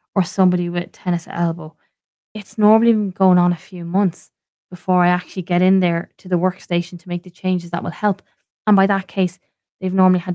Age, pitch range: 20-39, 170-195 Hz